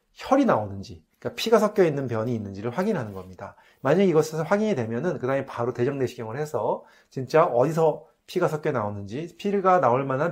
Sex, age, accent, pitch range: male, 30-49, native, 120-180 Hz